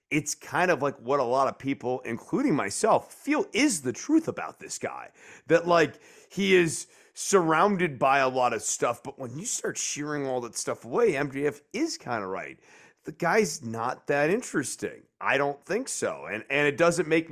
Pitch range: 130-175 Hz